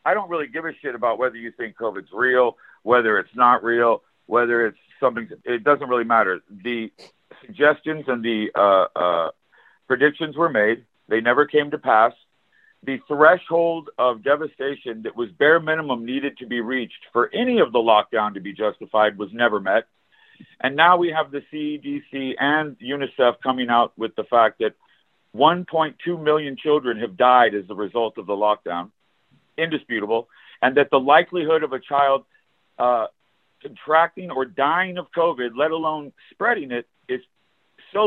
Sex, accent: male, American